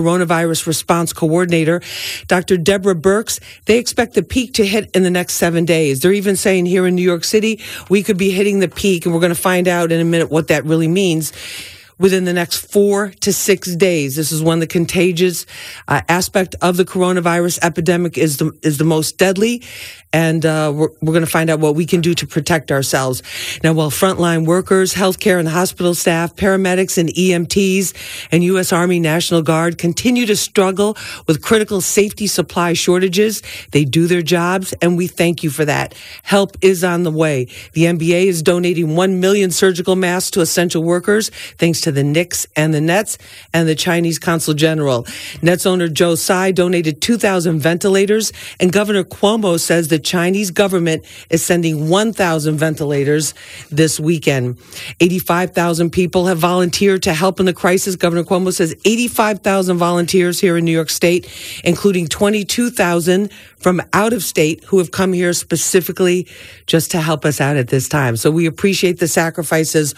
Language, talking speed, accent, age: English, 180 wpm, American, 50-69